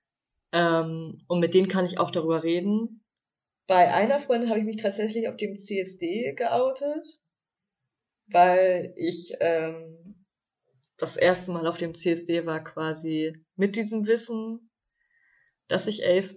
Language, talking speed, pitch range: German, 135 wpm, 165-205 Hz